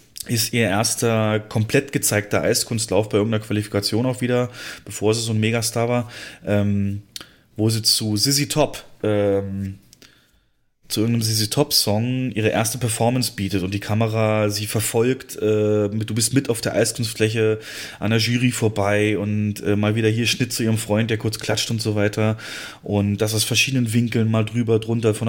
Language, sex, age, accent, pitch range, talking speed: German, male, 30-49, German, 105-120 Hz, 175 wpm